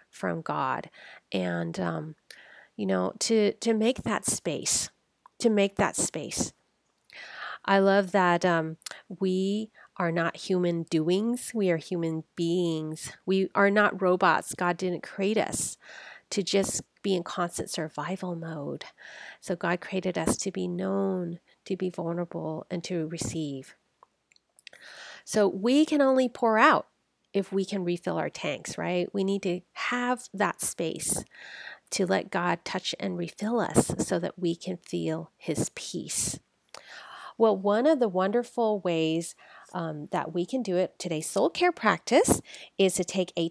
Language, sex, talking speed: English, female, 150 wpm